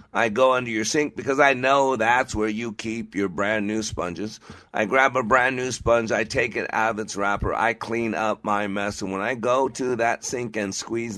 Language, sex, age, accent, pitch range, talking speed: English, male, 50-69, American, 100-125 Hz, 230 wpm